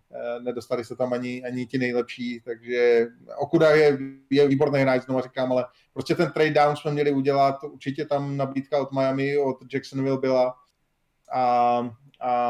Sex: male